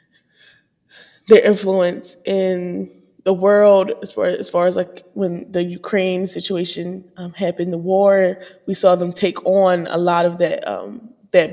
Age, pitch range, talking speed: 10-29, 175-195 Hz, 155 wpm